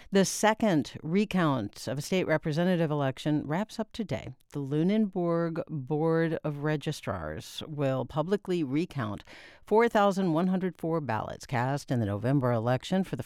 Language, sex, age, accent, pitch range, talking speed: English, female, 60-79, American, 130-175 Hz, 125 wpm